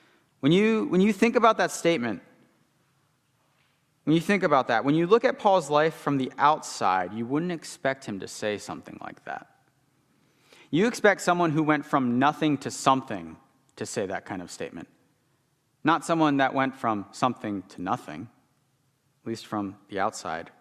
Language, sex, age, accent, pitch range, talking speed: English, male, 30-49, American, 120-160 Hz, 170 wpm